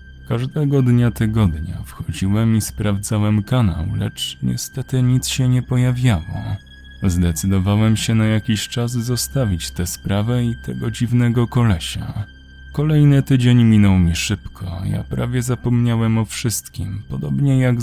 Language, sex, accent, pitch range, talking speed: Polish, male, native, 95-125 Hz, 125 wpm